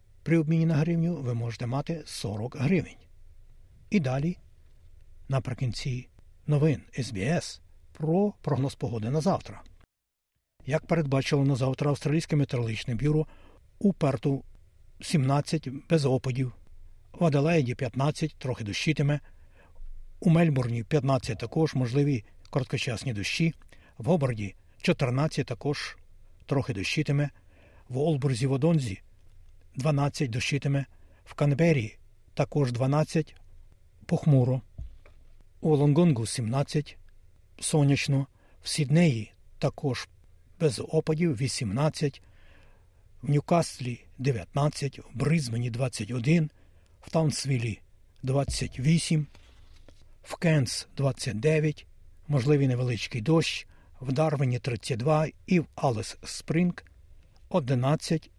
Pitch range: 95-155 Hz